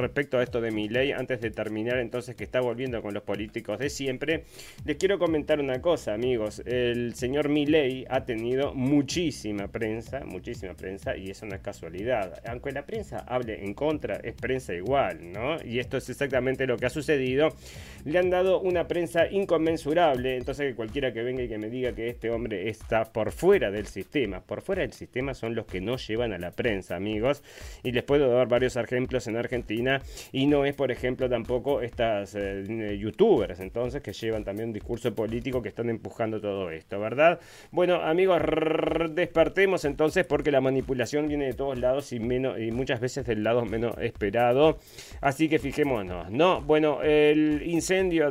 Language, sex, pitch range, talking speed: Spanish, male, 115-145 Hz, 185 wpm